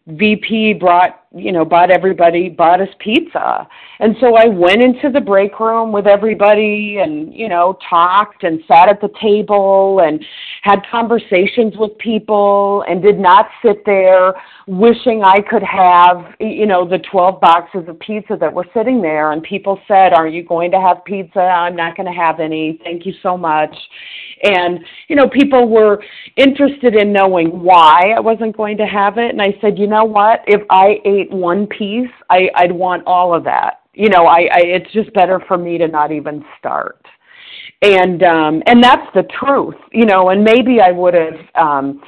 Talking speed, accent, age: 185 wpm, American, 40-59